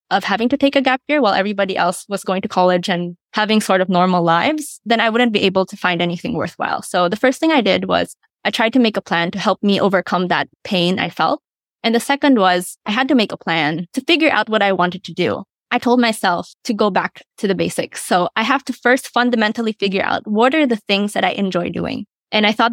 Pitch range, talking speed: 185-230 Hz, 255 wpm